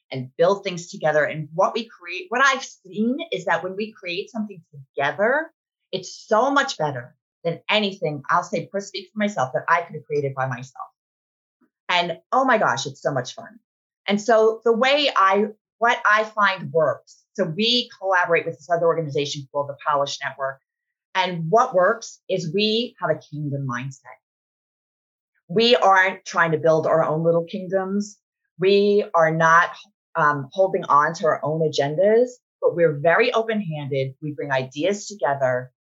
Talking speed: 170 wpm